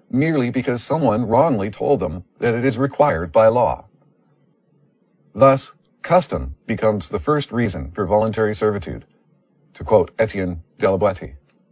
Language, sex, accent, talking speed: English, male, American, 130 wpm